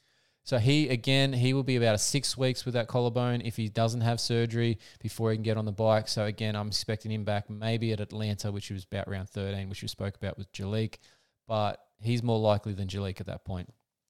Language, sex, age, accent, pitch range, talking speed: English, male, 20-39, Australian, 100-120 Hz, 225 wpm